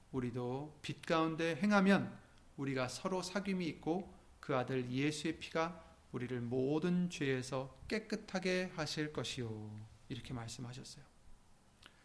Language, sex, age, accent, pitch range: Korean, male, 30-49, native, 125-160 Hz